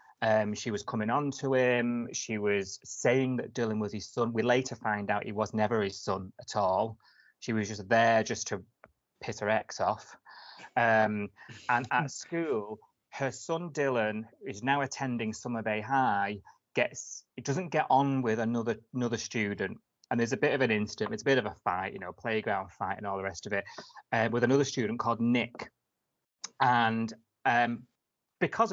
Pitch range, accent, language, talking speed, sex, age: 110-125 Hz, British, English, 190 wpm, male, 30-49